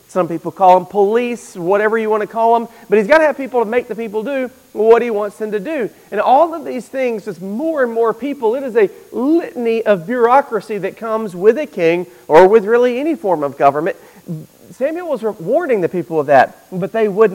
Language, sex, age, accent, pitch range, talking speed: English, male, 40-59, American, 185-235 Hz, 230 wpm